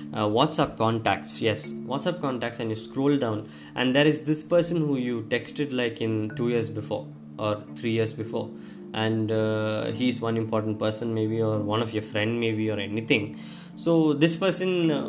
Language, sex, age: Tamil, male, 20-39